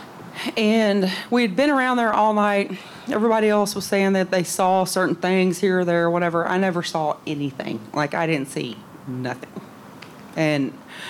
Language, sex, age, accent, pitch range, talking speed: English, female, 30-49, American, 170-205 Hz, 175 wpm